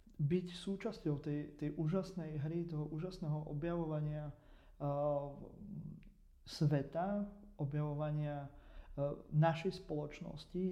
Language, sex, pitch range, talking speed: Slovak, male, 145-170 Hz, 85 wpm